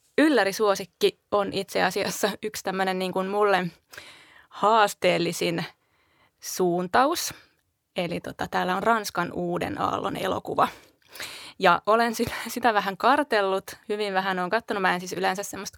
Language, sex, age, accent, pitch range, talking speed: Finnish, female, 20-39, native, 185-235 Hz, 125 wpm